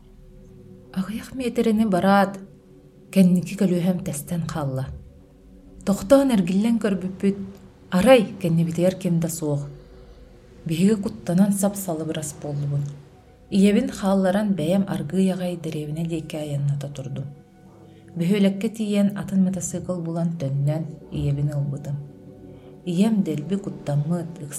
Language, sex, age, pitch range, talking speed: Russian, female, 30-49, 145-185 Hz, 85 wpm